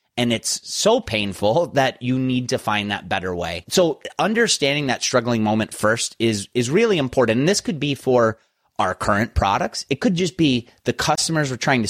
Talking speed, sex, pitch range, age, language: 195 wpm, male, 105-140 Hz, 30-49, English